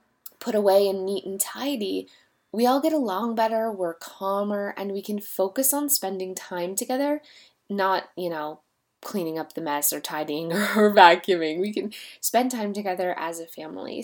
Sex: female